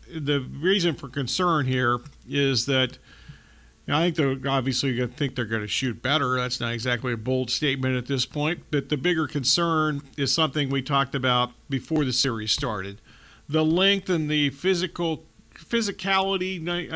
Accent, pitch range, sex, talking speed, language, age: American, 135-170 Hz, male, 175 wpm, English, 50-69